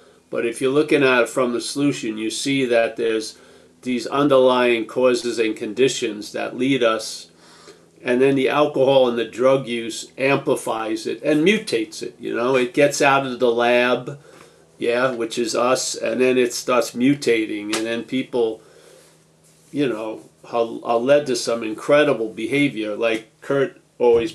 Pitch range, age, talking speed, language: 120-145 Hz, 50-69, 160 wpm, English